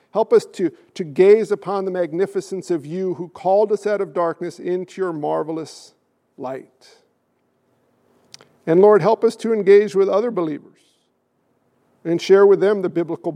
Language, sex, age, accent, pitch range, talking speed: English, male, 50-69, American, 165-190 Hz, 155 wpm